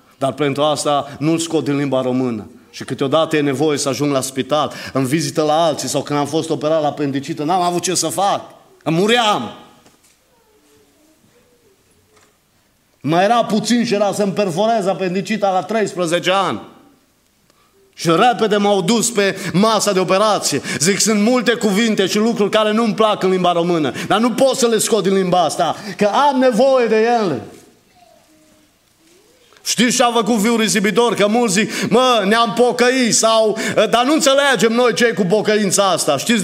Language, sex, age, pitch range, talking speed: Romanian, male, 30-49, 130-215 Hz, 165 wpm